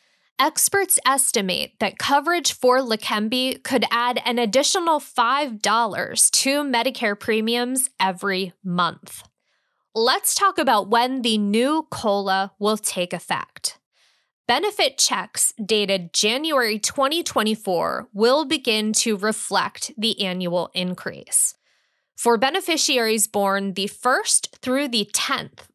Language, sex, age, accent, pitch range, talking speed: English, female, 20-39, American, 195-270 Hz, 105 wpm